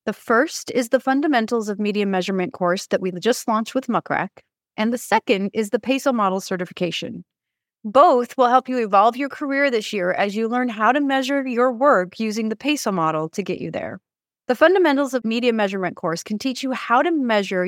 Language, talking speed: English, 205 wpm